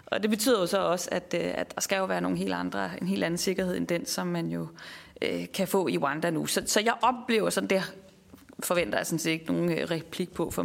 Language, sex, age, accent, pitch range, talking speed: Danish, female, 30-49, native, 175-215 Hz, 230 wpm